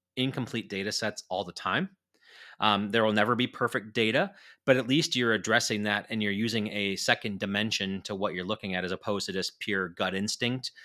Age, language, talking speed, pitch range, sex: 30-49, English, 205 wpm, 100-120 Hz, male